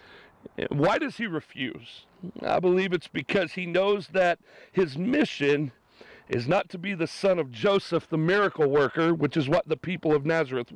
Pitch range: 155-200 Hz